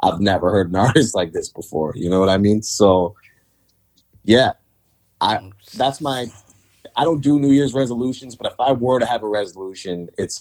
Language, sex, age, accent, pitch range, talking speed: English, male, 20-39, American, 90-110 Hz, 190 wpm